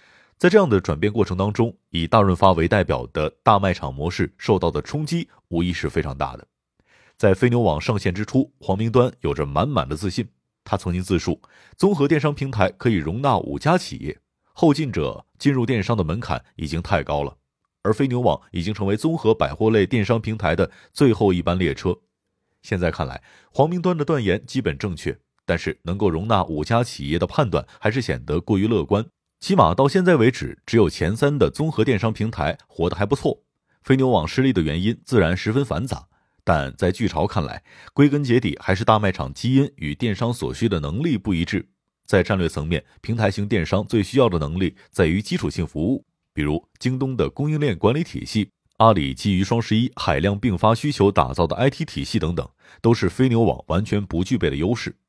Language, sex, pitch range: Chinese, male, 90-125 Hz